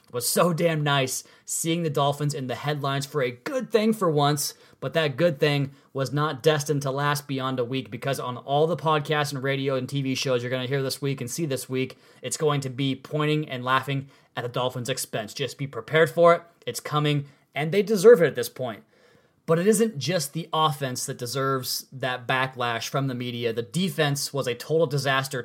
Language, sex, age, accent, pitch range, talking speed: English, male, 30-49, American, 130-155 Hz, 215 wpm